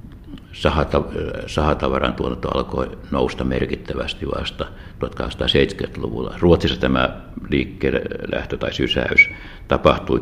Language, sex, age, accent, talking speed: Finnish, male, 60-79, native, 80 wpm